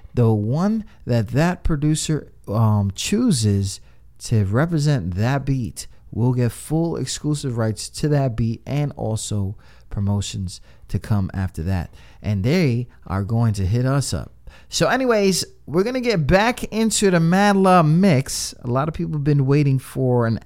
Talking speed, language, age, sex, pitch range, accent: 160 wpm, English, 30-49, male, 100-155 Hz, American